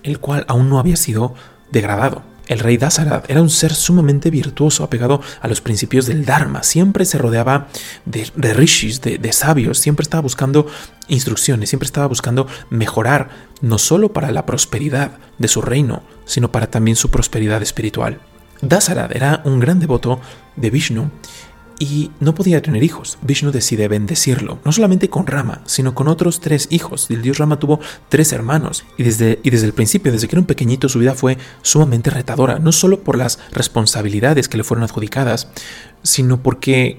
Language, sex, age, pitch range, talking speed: Spanish, male, 30-49, 120-150 Hz, 175 wpm